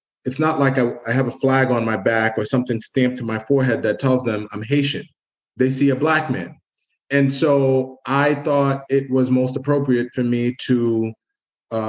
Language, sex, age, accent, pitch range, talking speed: English, male, 20-39, American, 115-135 Hz, 190 wpm